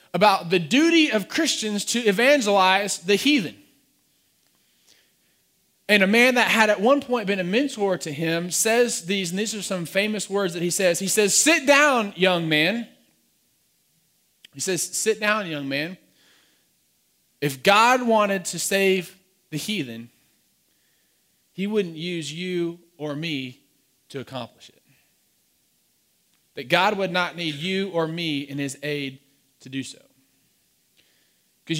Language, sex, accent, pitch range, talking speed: English, male, American, 145-205 Hz, 145 wpm